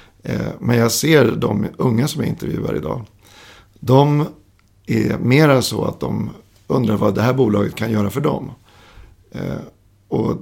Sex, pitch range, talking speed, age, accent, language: male, 100-130 Hz, 145 wpm, 50-69, native, Swedish